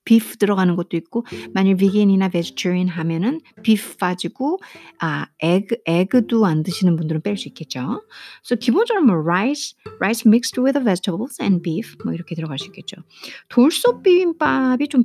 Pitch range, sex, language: 175-250 Hz, female, Korean